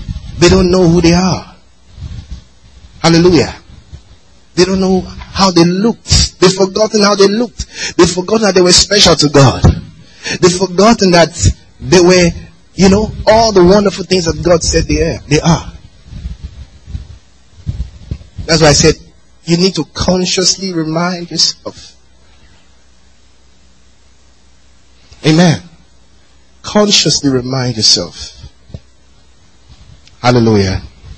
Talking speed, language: 110 wpm, English